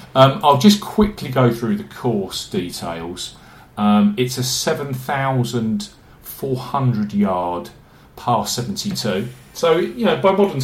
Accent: British